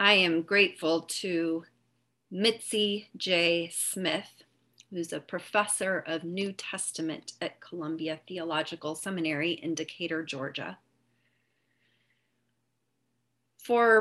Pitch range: 135-195 Hz